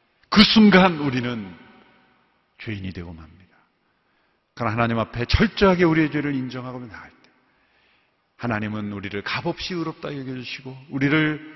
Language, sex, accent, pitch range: Korean, male, native, 105-160 Hz